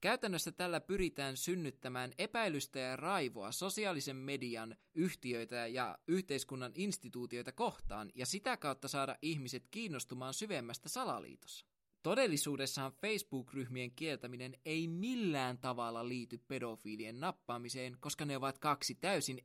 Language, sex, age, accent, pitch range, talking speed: Finnish, male, 20-39, native, 130-175 Hz, 110 wpm